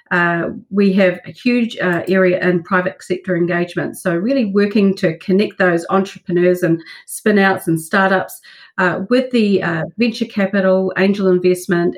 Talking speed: 155 wpm